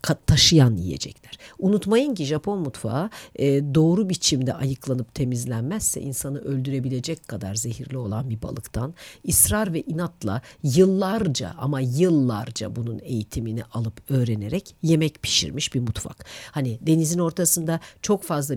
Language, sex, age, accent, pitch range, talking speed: Turkish, female, 50-69, native, 120-160 Hz, 115 wpm